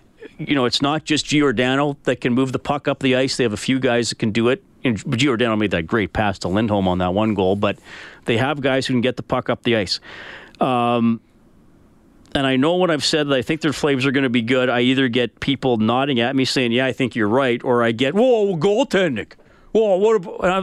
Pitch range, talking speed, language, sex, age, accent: 120-155 Hz, 245 wpm, English, male, 40-59, American